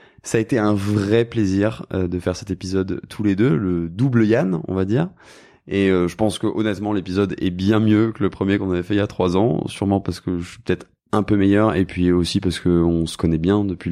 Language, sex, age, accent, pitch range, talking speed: French, male, 20-39, French, 90-110 Hz, 250 wpm